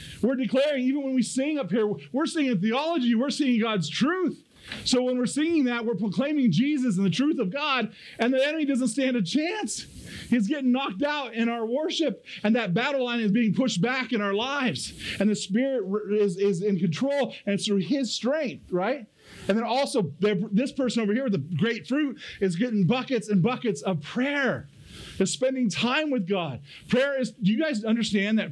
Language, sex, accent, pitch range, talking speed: English, male, American, 205-260 Hz, 200 wpm